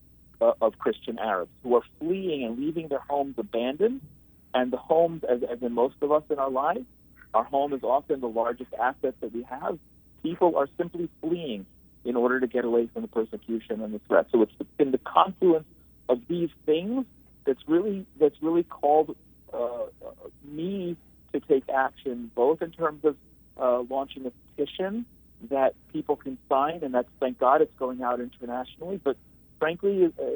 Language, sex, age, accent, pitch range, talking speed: English, male, 50-69, American, 120-155 Hz, 175 wpm